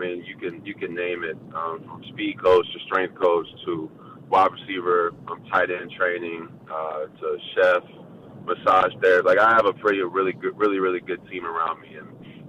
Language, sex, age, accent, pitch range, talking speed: English, male, 20-39, American, 95-120 Hz, 200 wpm